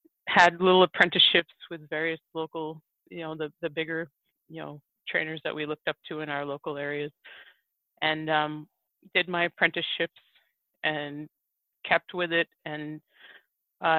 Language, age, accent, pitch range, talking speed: English, 30-49, American, 150-175 Hz, 145 wpm